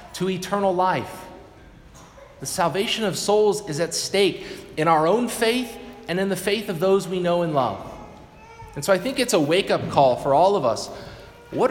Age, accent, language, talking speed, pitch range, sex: 30-49, American, English, 190 wpm, 175-215 Hz, male